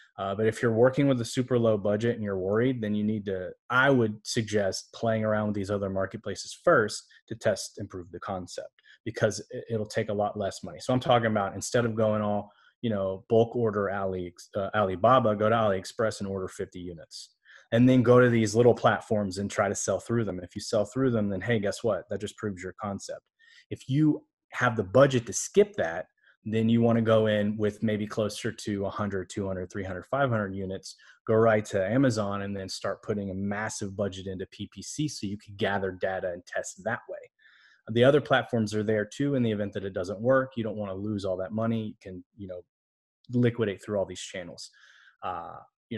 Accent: American